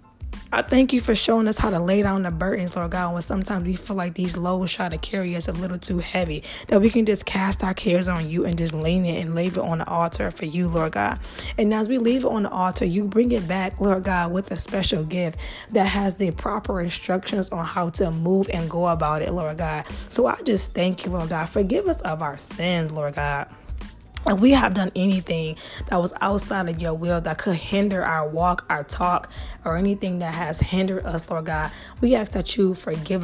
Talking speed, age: 240 wpm, 20-39